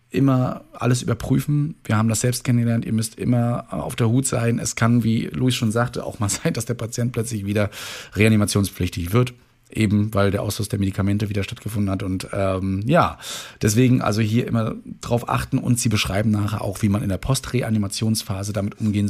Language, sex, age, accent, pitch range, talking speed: German, male, 40-59, German, 100-120 Hz, 190 wpm